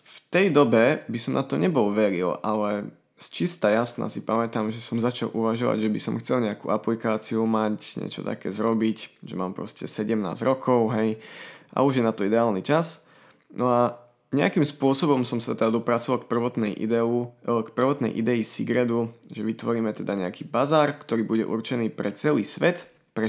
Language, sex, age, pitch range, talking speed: Slovak, male, 20-39, 110-130 Hz, 180 wpm